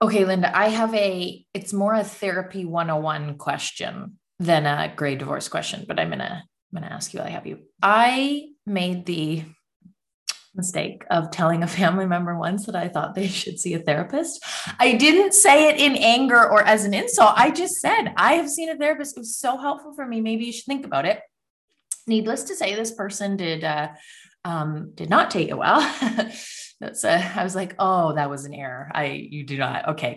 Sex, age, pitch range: female, 20-39, 170-245 Hz